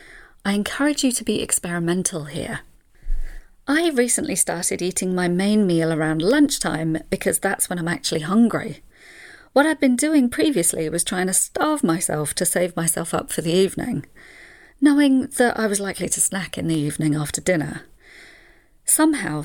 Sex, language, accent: female, English, British